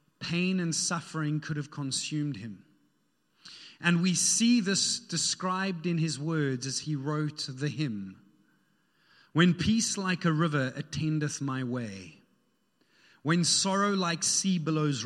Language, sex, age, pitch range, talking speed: English, male, 30-49, 140-180 Hz, 130 wpm